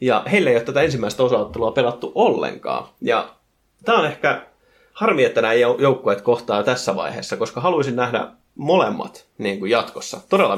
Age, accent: 30-49, native